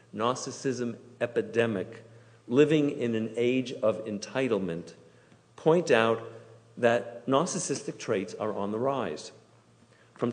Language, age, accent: English, 50-69, American